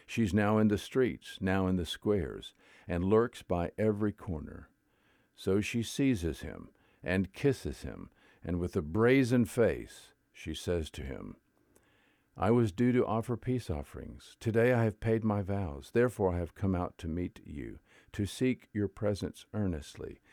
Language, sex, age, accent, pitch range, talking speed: English, male, 50-69, American, 90-115 Hz, 165 wpm